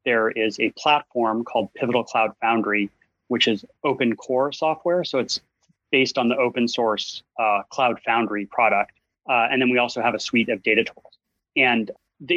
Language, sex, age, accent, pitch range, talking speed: English, male, 30-49, American, 115-140 Hz, 180 wpm